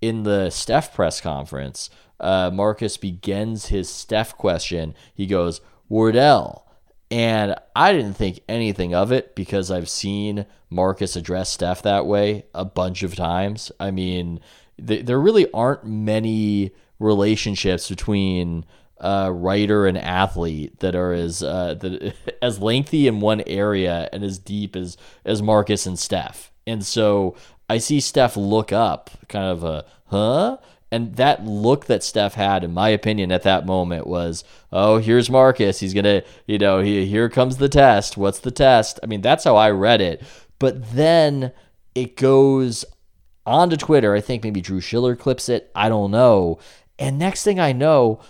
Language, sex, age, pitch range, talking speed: English, male, 20-39, 95-115 Hz, 165 wpm